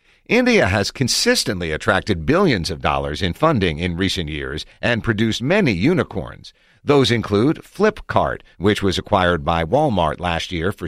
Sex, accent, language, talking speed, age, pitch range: male, American, English, 150 wpm, 50-69, 90-125 Hz